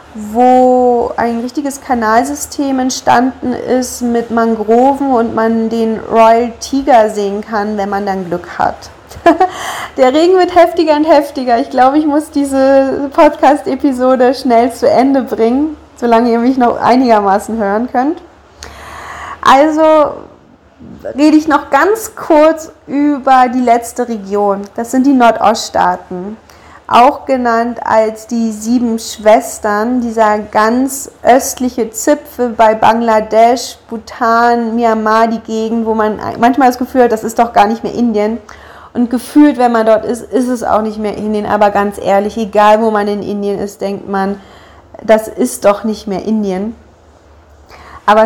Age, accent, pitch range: 30-49, German, 215-255 Hz